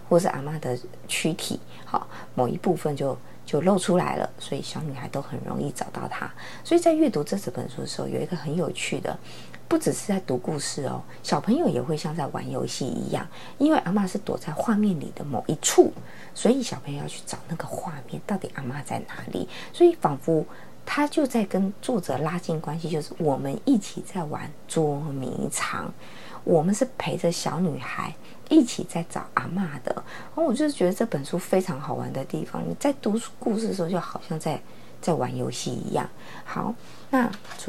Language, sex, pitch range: Chinese, female, 150-215 Hz